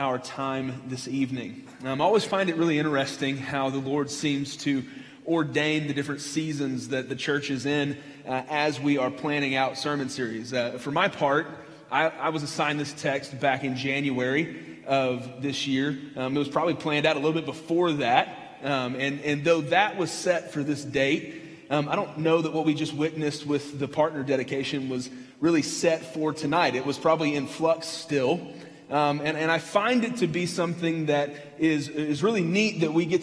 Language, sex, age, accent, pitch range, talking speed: English, male, 30-49, American, 145-175 Hz, 200 wpm